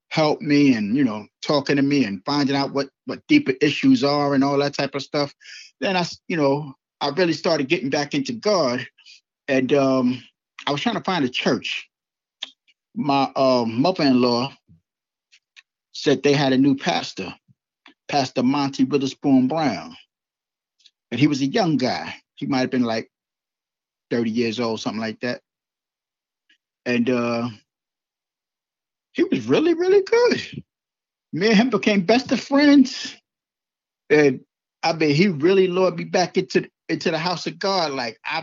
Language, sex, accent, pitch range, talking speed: English, male, American, 130-180 Hz, 160 wpm